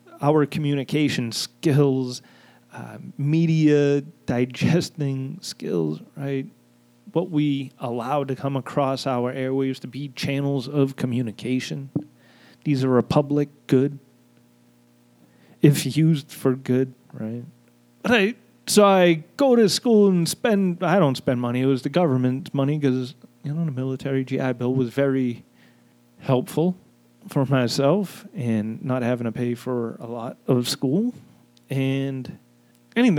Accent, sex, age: American, male, 30-49